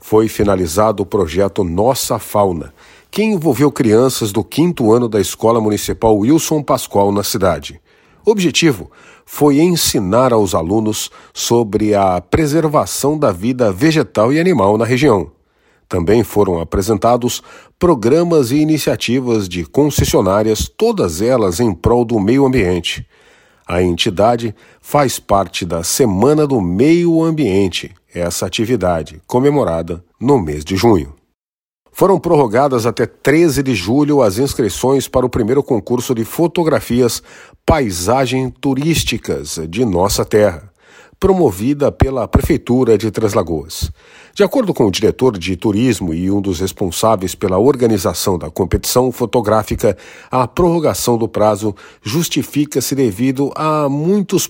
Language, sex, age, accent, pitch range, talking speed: Portuguese, male, 50-69, Brazilian, 100-135 Hz, 125 wpm